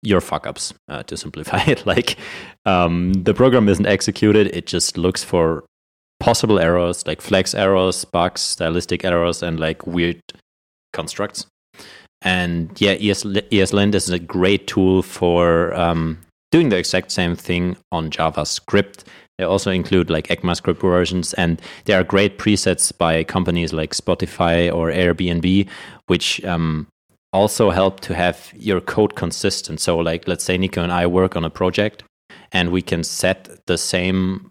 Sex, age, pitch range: male, 30-49, 85-100 Hz